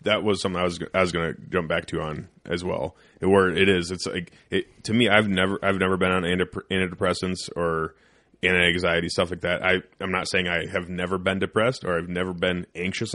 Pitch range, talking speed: 90-100 Hz, 225 wpm